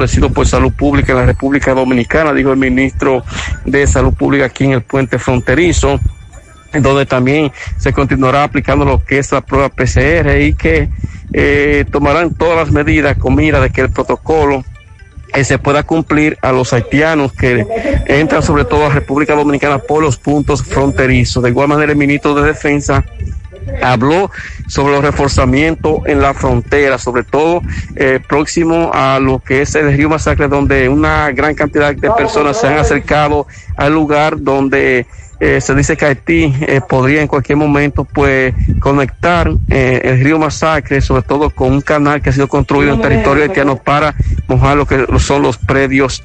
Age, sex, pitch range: 50-69, male, 130-145 Hz